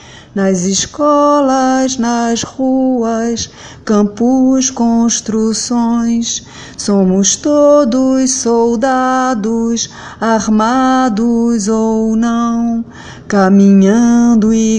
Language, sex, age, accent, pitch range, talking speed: French, female, 30-49, Brazilian, 195-235 Hz, 55 wpm